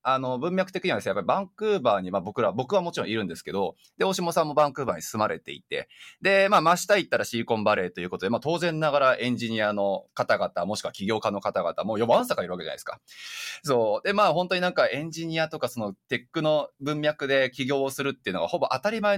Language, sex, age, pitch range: Japanese, male, 20-39, 120-195 Hz